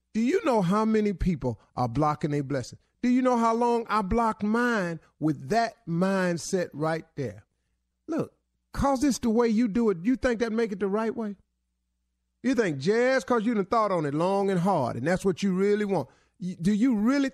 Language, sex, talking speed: English, male, 210 wpm